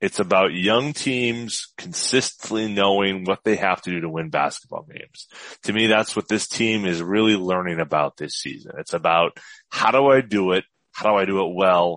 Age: 30-49